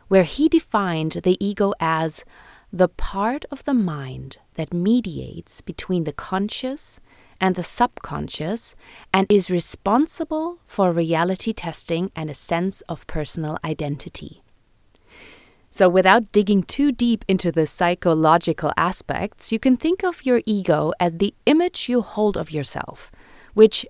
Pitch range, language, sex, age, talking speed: 165-230 Hz, English, female, 30-49, 135 wpm